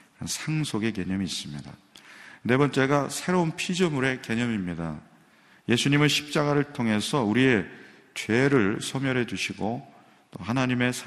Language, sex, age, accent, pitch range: Korean, male, 40-59, native, 100-140 Hz